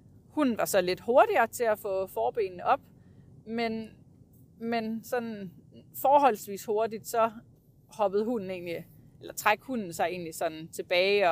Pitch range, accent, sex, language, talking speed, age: 180-235 Hz, native, female, Danish, 140 wpm, 30-49